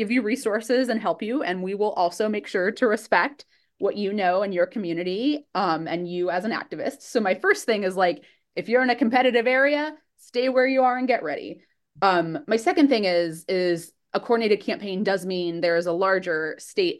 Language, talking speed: English, 215 wpm